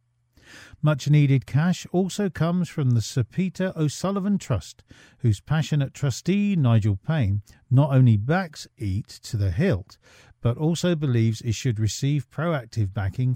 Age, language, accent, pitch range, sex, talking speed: 40-59, English, British, 115-175 Hz, male, 135 wpm